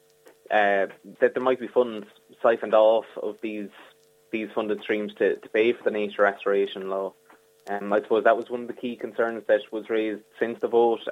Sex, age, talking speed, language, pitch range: male, 20-39, 200 wpm, English, 100-115 Hz